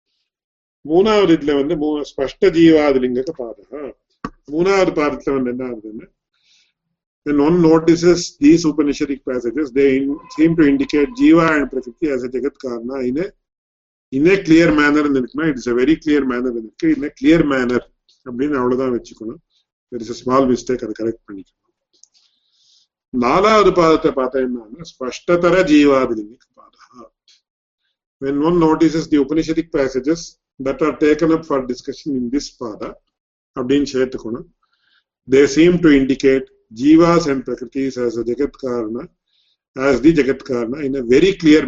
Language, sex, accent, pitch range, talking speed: English, male, Indian, 130-160 Hz, 105 wpm